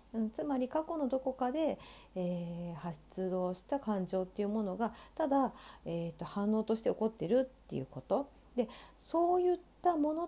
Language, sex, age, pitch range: Japanese, female, 50-69, 165-235 Hz